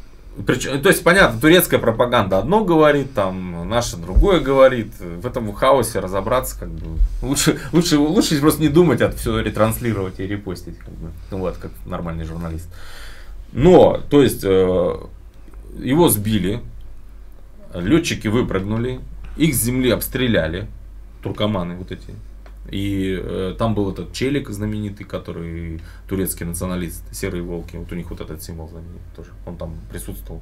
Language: Russian